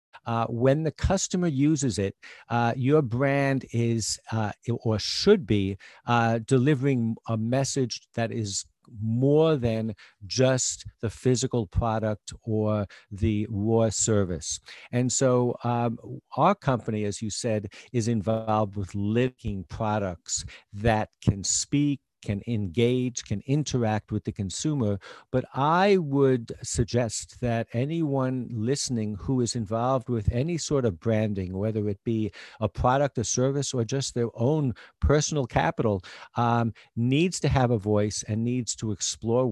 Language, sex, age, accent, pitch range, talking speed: English, male, 50-69, American, 105-130 Hz, 140 wpm